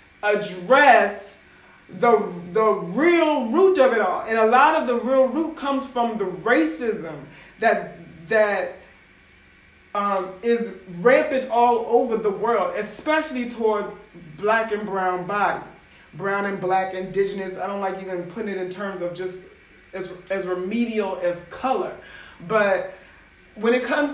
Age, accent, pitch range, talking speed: 30-49, American, 190-265 Hz, 140 wpm